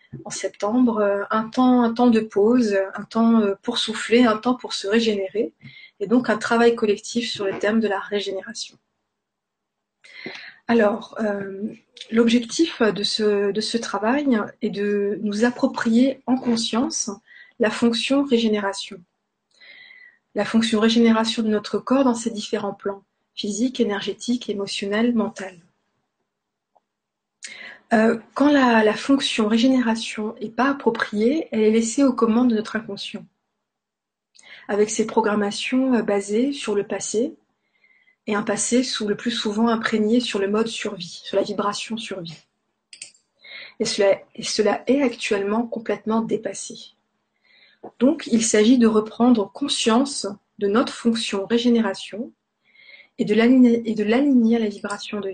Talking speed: 135 wpm